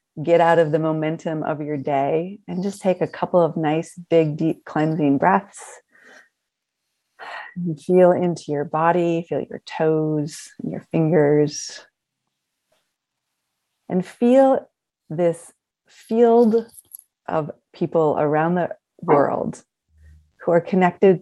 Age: 30-49